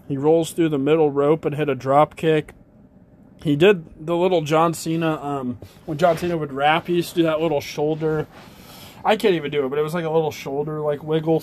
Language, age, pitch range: English, 20-39, 145-170 Hz